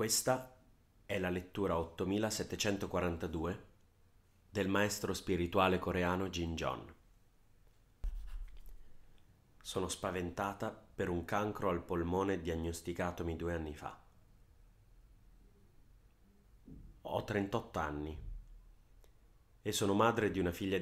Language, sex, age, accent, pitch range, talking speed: Italian, male, 30-49, native, 90-105 Hz, 90 wpm